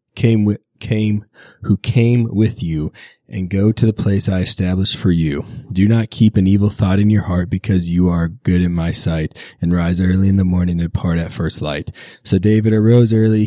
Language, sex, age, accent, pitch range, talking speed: English, male, 20-39, American, 90-105 Hz, 210 wpm